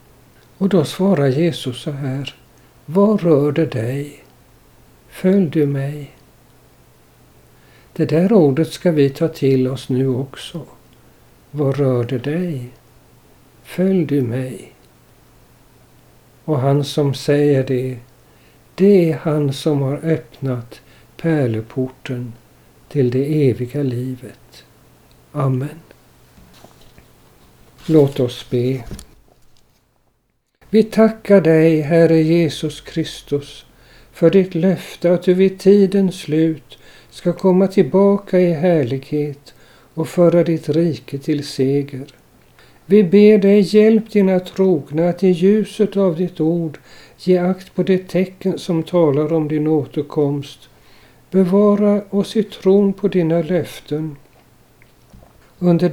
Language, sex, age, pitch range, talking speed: Swedish, male, 60-79, 135-185 Hz, 110 wpm